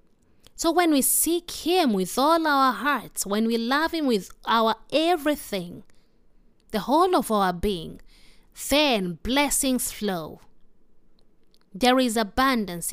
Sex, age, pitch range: female, 20-39, 195-260 Hz